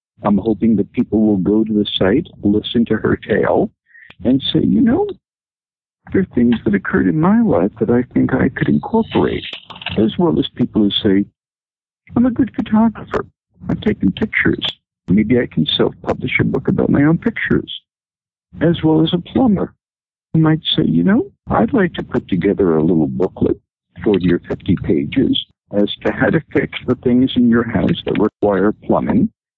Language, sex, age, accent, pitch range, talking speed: English, male, 60-79, American, 95-145 Hz, 180 wpm